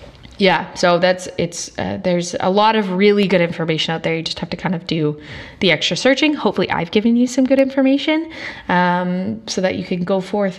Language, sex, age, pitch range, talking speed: English, female, 20-39, 160-210 Hz, 215 wpm